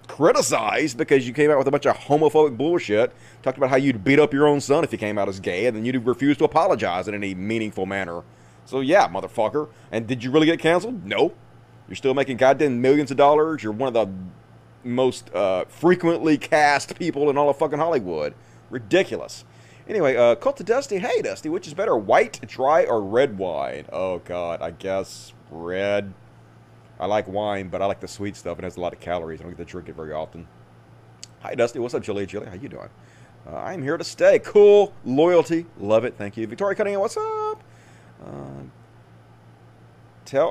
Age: 30-49